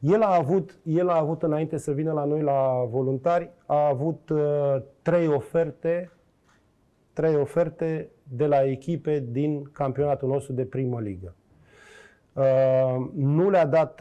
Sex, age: male, 30-49